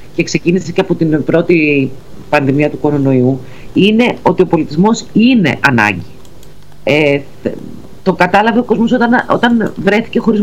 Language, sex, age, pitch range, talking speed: Greek, female, 40-59, 155-210 Hz, 140 wpm